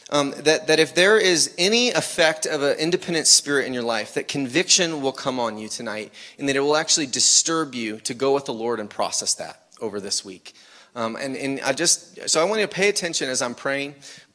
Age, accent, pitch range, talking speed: 30-49, American, 125-155 Hz, 230 wpm